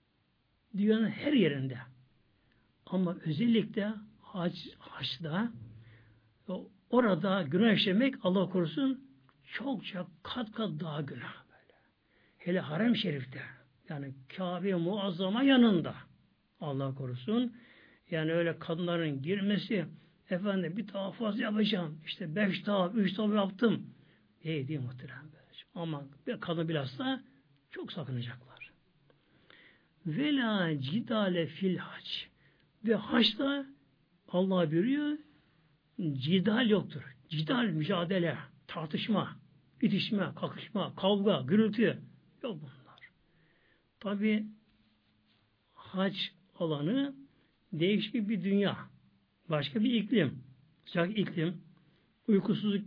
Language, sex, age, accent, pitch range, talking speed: Turkish, male, 60-79, native, 155-215 Hz, 85 wpm